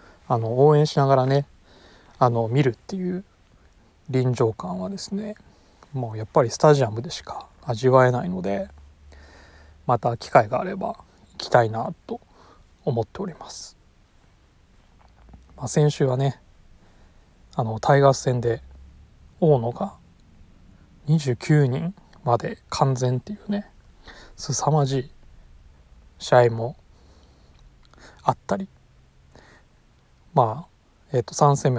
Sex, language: male, Japanese